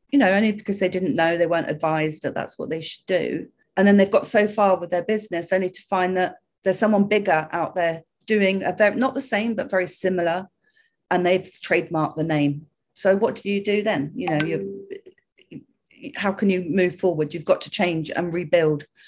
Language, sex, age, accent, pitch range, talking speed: English, female, 40-59, British, 160-200 Hz, 210 wpm